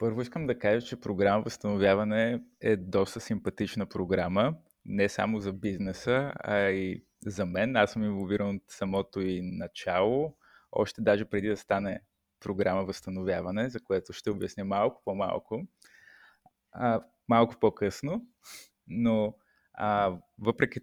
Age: 20-39